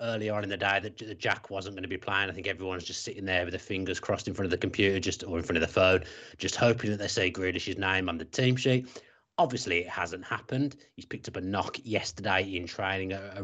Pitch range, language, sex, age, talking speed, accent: 95-120 Hz, English, male, 30-49, 265 wpm, British